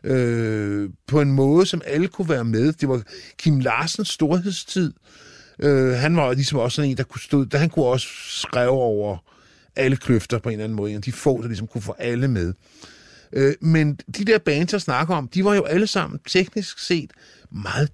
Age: 50-69